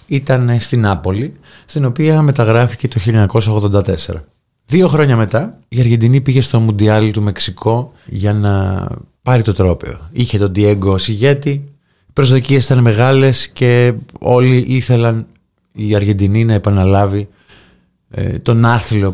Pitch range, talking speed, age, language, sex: 100-125 Hz, 130 wpm, 30-49, Greek, male